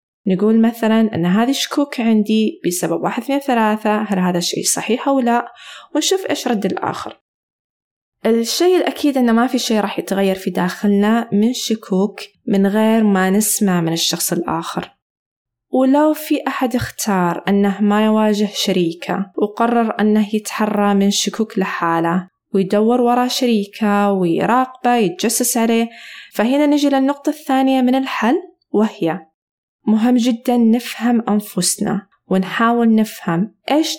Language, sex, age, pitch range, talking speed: Arabic, female, 20-39, 195-250 Hz, 130 wpm